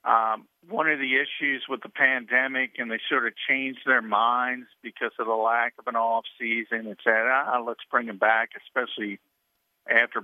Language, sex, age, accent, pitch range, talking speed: English, male, 50-69, American, 110-135 Hz, 180 wpm